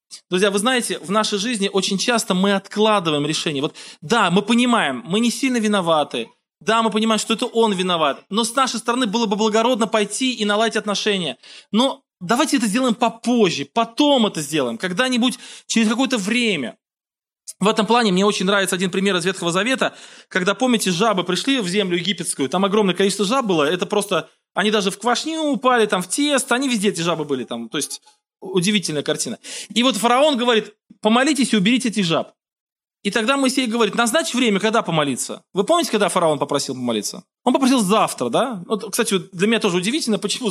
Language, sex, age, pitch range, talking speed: Russian, male, 20-39, 180-235 Hz, 185 wpm